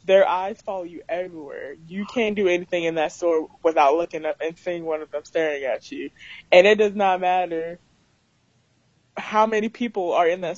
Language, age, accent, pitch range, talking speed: English, 20-39, American, 160-190 Hz, 195 wpm